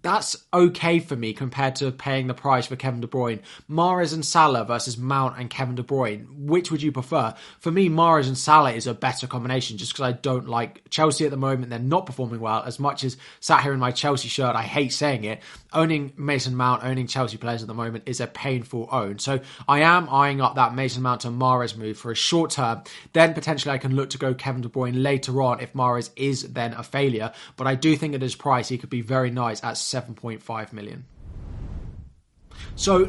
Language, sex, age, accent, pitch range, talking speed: English, male, 20-39, British, 125-150 Hz, 220 wpm